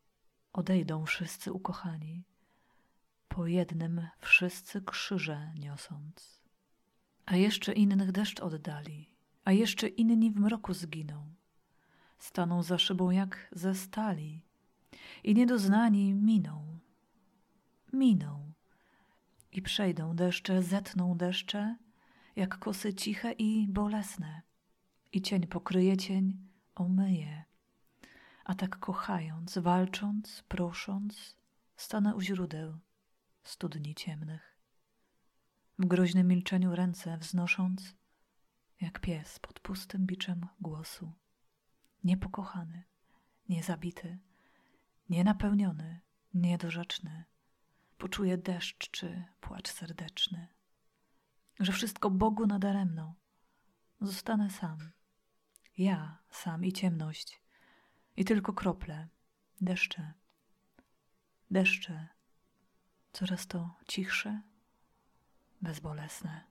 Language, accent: Polish, native